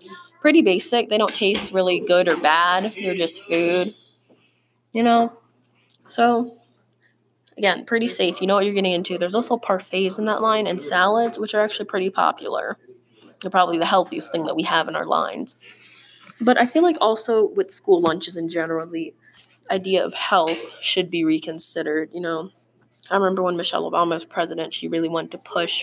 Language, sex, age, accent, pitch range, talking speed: English, female, 20-39, American, 165-220 Hz, 185 wpm